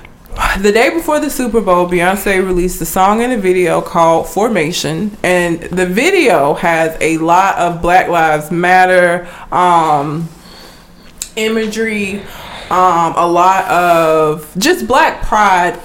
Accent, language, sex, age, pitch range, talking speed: American, English, female, 20-39, 175-225 Hz, 130 wpm